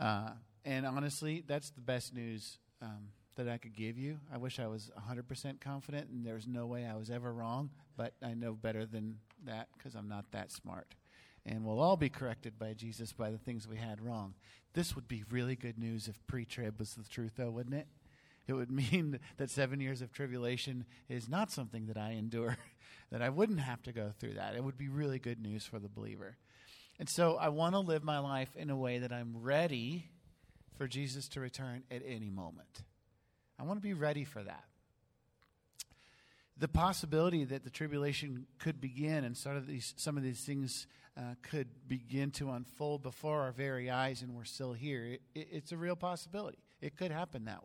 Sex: male